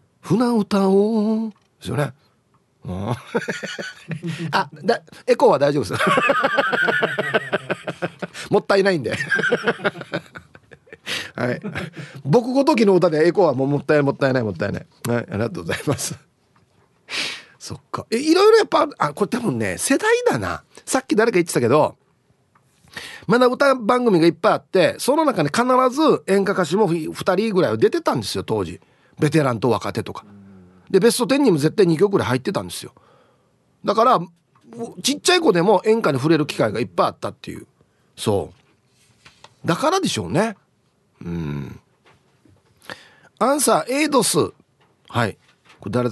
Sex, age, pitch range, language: male, 40-59, 135-220 Hz, Japanese